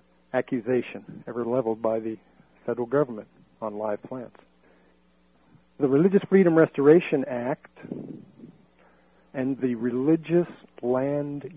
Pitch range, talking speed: 110-165 Hz, 100 wpm